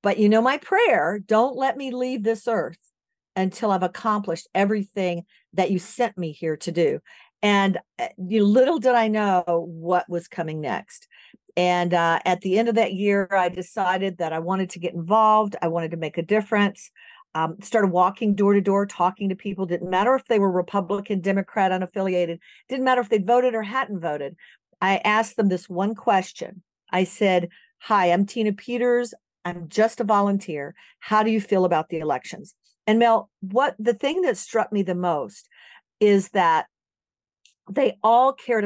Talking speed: 180 wpm